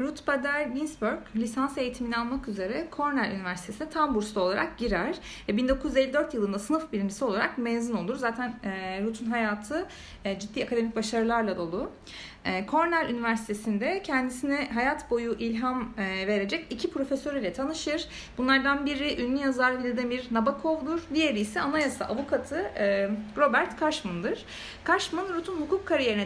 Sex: female